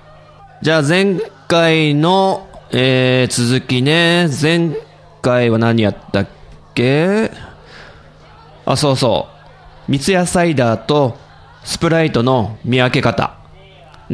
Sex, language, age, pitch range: male, Japanese, 20-39, 120-165 Hz